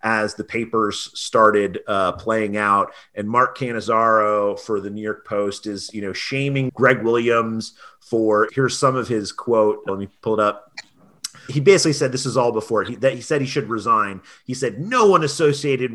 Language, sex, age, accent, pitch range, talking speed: English, male, 30-49, American, 105-130 Hz, 190 wpm